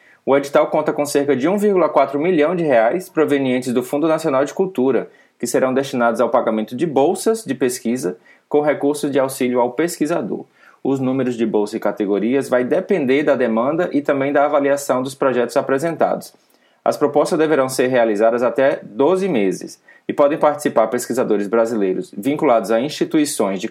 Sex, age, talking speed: male, 20-39, 165 wpm